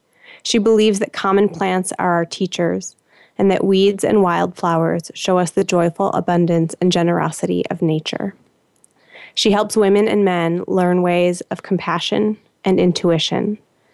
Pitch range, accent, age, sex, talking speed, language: 175-200 Hz, American, 20-39, female, 140 wpm, English